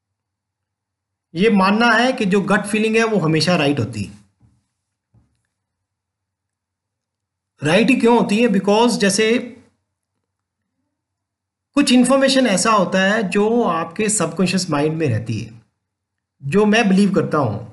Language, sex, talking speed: English, male, 125 wpm